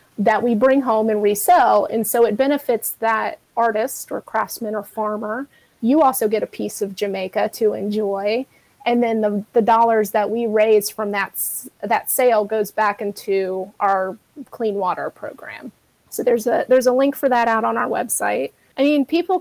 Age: 30-49